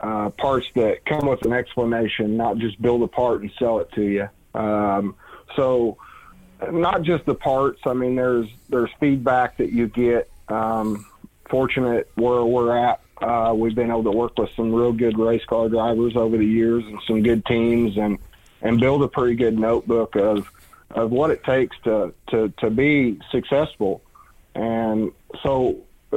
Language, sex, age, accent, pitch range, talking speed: English, male, 40-59, American, 110-125 Hz, 175 wpm